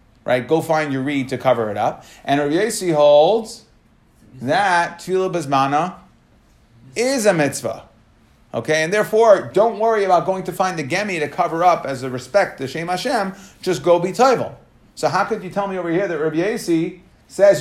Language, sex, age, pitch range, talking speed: English, male, 30-49, 135-180 Hz, 180 wpm